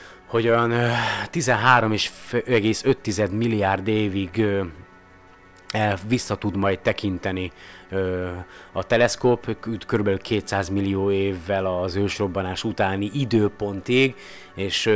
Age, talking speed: 30-49, 70 wpm